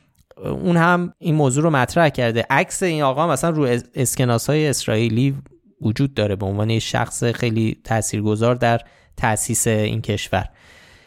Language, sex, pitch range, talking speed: Persian, male, 120-165 Hz, 145 wpm